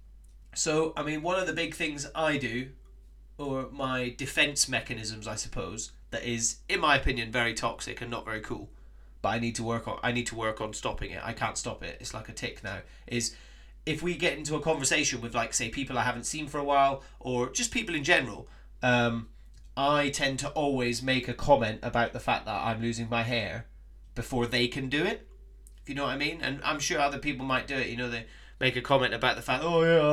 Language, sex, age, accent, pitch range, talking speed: English, male, 30-49, British, 115-145 Hz, 235 wpm